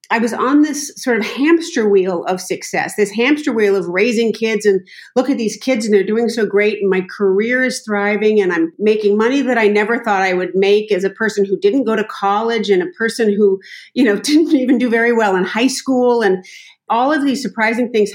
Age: 40-59